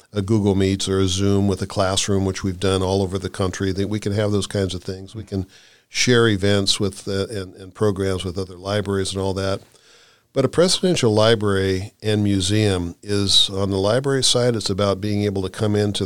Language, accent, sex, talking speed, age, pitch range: English, American, male, 215 wpm, 50-69, 95-115 Hz